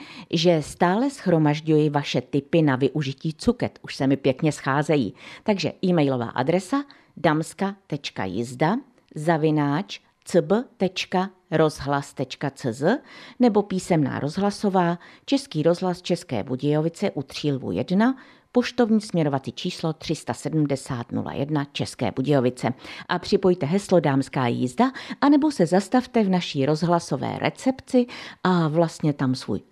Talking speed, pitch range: 100 wpm, 140-200 Hz